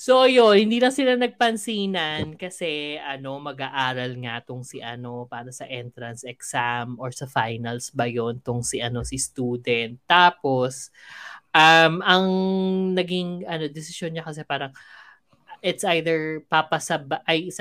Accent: native